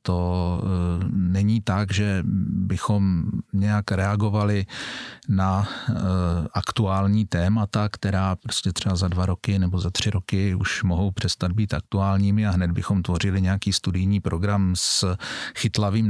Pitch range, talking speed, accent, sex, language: 95-115 Hz, 125 wpm, native, male, Czech